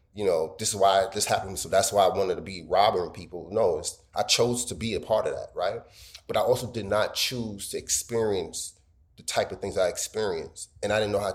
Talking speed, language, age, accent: 245 wpm, English, 30-49, American